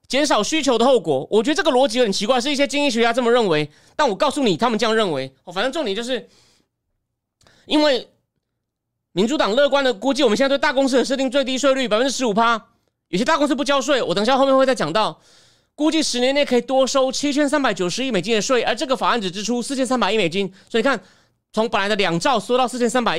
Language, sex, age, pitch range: Chinese, male, 30-49, 195-265 Hz